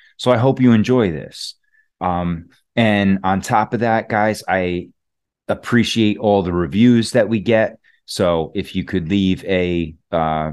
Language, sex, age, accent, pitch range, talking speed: English, male, 30-49, American, 85-105 Hz, 160 wpm